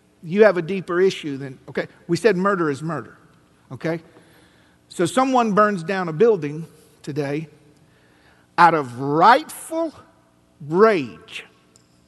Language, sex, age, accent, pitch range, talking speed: English, male, 50-69, American, 150-225 Hz, 120 wpm